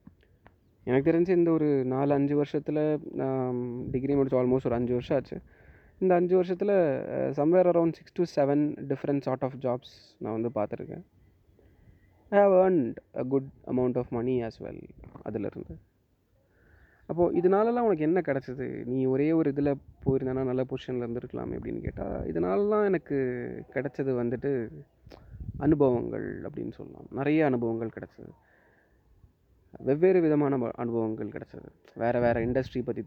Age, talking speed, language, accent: 30-49, 135 wpm, Tamil, native